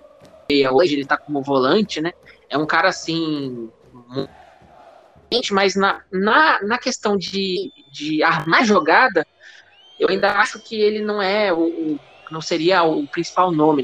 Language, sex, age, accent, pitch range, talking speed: Portuguese, male, 20-39, Brazilian, 160-220 Hz, 145 wpm